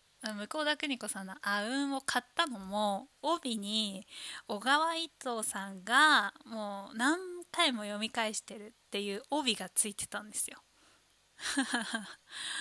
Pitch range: 195-240 Hz